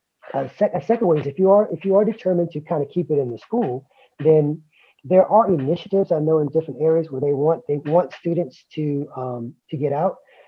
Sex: male